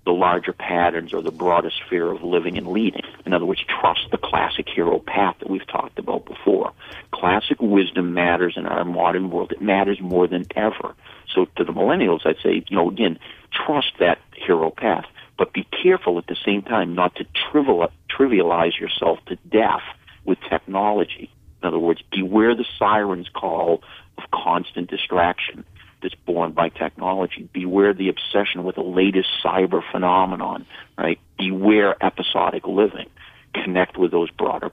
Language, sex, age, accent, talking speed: English, male, 50-69, American, 160 wpm